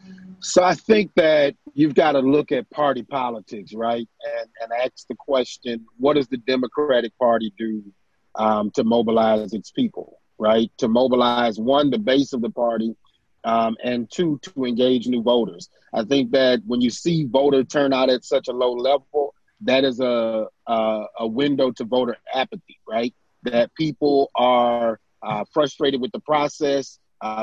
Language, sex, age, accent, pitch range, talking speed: English, male, 30-49, American, 120-145 Hz, 165 wpm